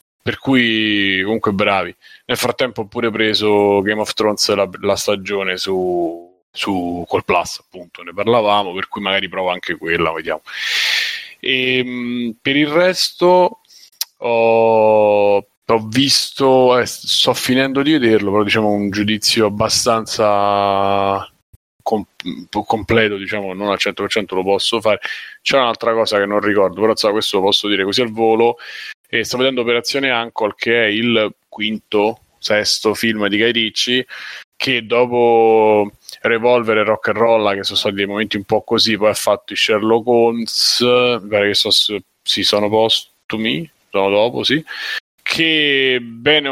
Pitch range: 100-120 Hz